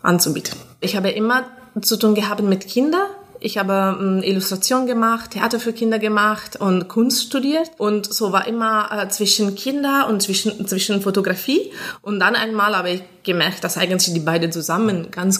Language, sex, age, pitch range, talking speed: German, female, 20-39, 175-225 Hz, 170 wpm